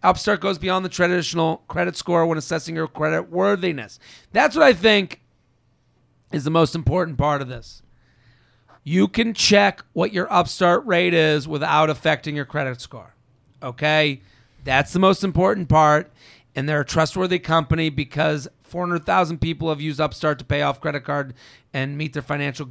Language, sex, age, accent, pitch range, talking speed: English, male, 40-59, American, 140-175 Hz, 165 wpm